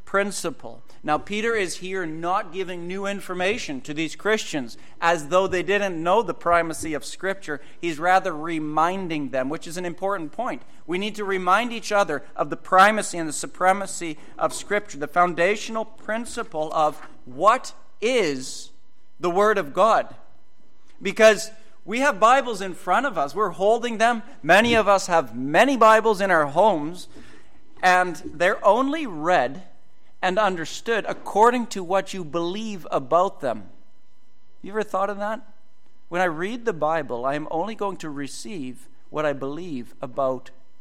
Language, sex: English, male